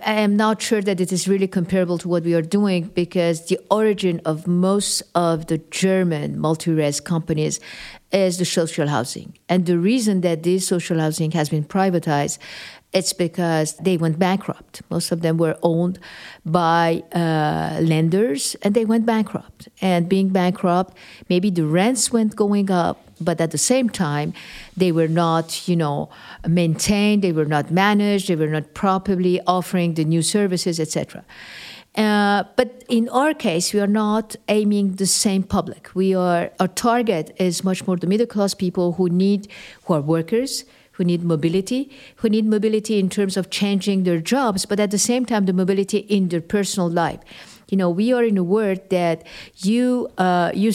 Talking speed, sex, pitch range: 175 wpm, female, 170-205 Hz